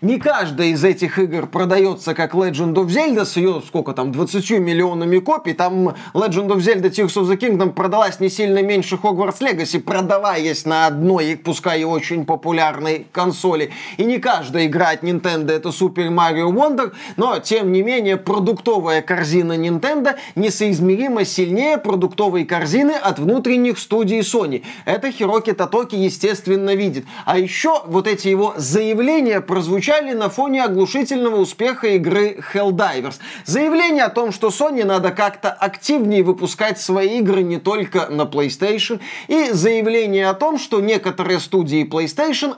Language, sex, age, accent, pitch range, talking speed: Russian, male, 20-39, native, 180-225 Hz, 145 wpm